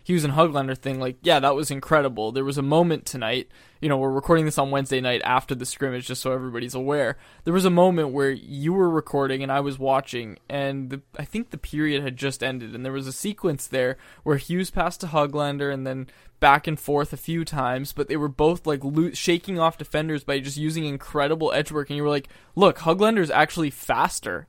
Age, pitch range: 20-39, 140-175 Hz